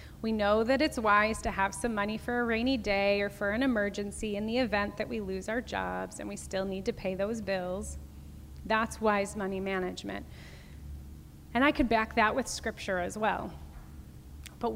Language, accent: English, American